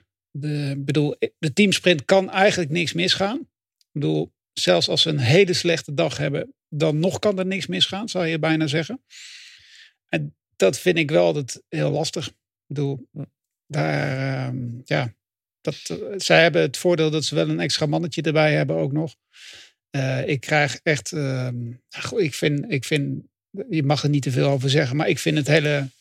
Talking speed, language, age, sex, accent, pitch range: 180 wpm, English, 50-69, male, Dutch, 140-170 Hz